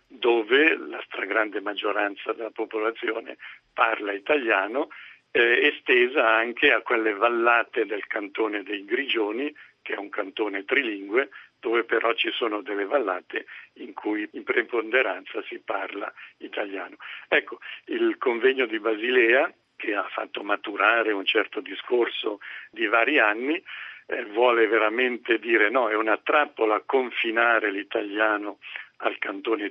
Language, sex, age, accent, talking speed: Italian, male, 70-89, native, 125 wpm